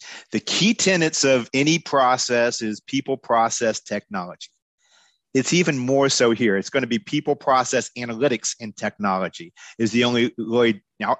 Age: 40-59